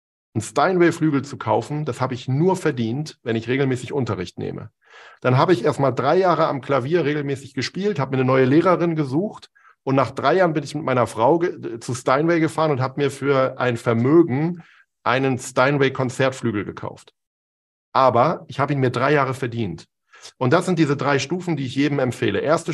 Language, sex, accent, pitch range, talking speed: German, male, German, 120-155 Hz, 185 wpm